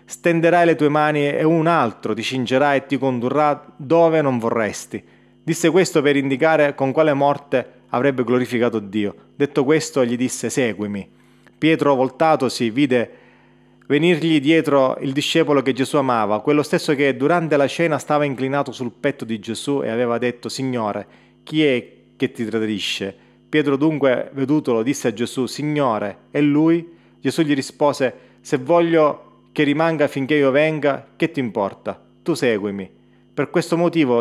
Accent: native